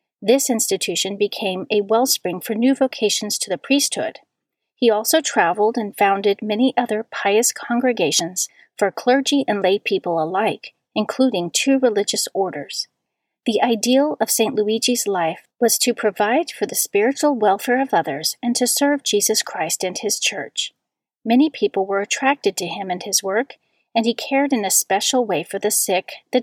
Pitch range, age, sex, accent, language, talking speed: 200-250 Hz, 40-59, female, American, English, 165 wpm